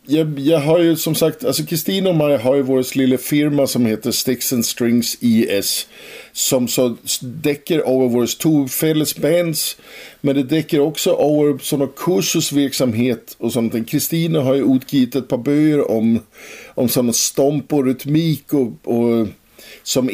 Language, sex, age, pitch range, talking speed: Danish, male, 50-69, 115-145 Hz, 155 wpm